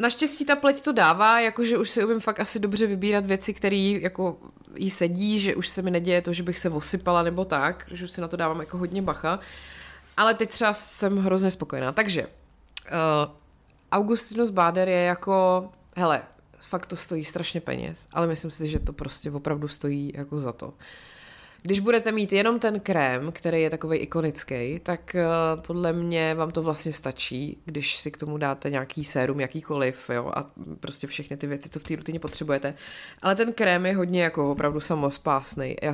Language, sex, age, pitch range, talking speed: Czech, female, 20-39, 150-185 Hz, 190 wpm